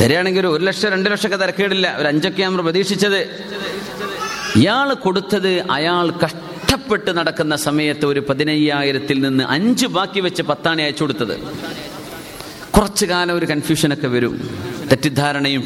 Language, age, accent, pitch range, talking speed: Malayalam, 30-49, native, 135-200 Hz, 120 wpm